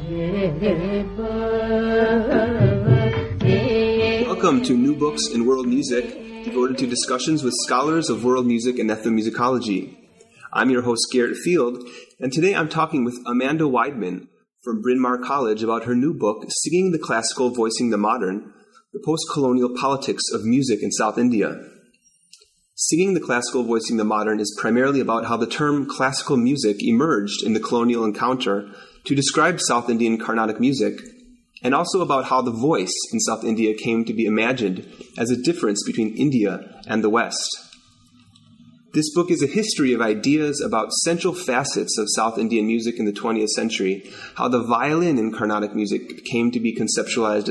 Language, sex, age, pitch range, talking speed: English, male, 30-49, 115-165 Hz, 160 wpm